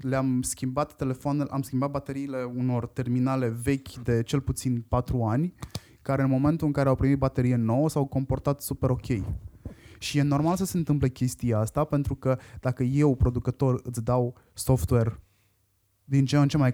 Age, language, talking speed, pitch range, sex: 20-39, Romanian, 170 wpm, 115-145 Hz, male